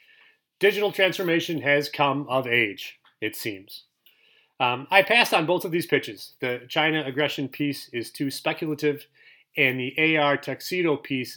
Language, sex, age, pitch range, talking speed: English, male, 30-49, 130-160 Hz, 150 wpm